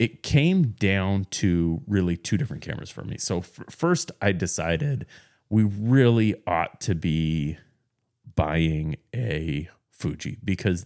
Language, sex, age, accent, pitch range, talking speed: English, male, 30-49, American, 85-115 Hz, 135 wpm